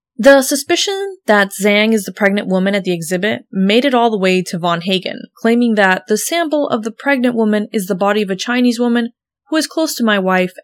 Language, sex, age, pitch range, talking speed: English, female, 20-39, 195-265 Hz, 225 wpm